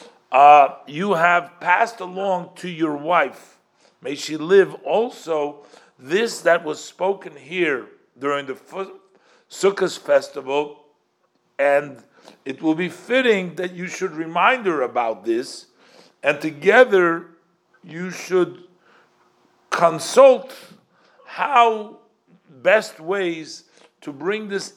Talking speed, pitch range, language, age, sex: 105 wpm, 150-195 Hz, English, 50-69, male